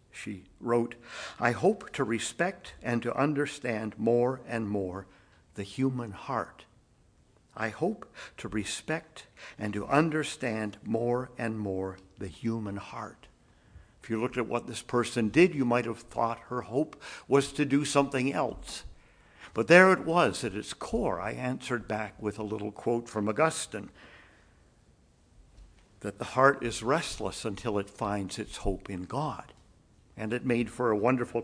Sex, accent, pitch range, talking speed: male, American, 105-135 Hz, 155 wpm